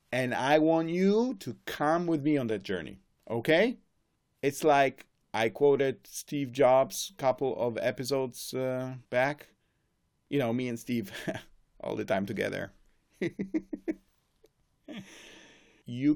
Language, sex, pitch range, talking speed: English, male, 120-165 Hz, 125 wpm